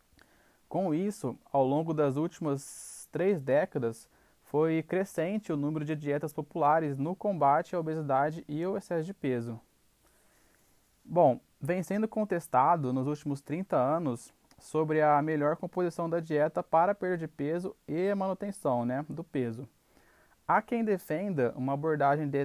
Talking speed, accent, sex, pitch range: 145 wpm, Brazilian, male, 135-175 Hz